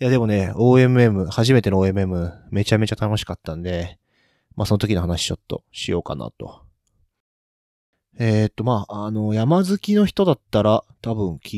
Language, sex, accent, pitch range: Japanese, male, native, 90-120 Hz